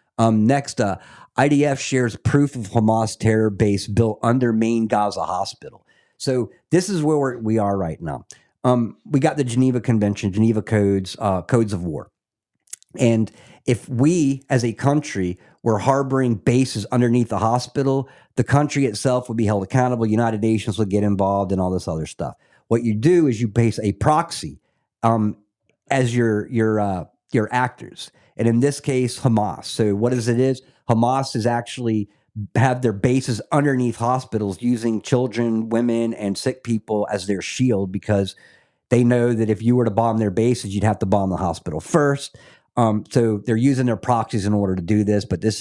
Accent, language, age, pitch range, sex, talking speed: American, English, 50-69, 105-125 Hz, male, 180 wpm